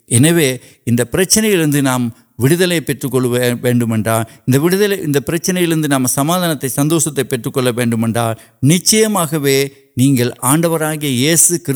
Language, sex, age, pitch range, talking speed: Urdu, male, 60-79, 125-155 Hz, 65 wpm